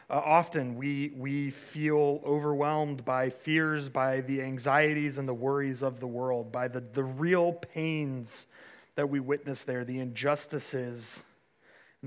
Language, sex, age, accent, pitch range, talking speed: English, male, 30-49, American, 125-150 Hz, 145 wpm